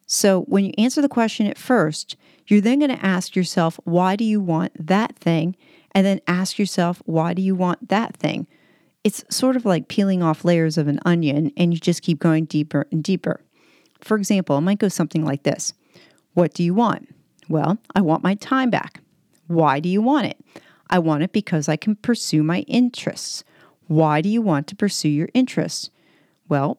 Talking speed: 200 wpm